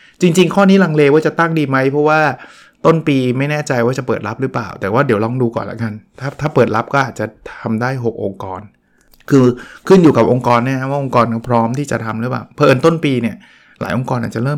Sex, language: male, Thai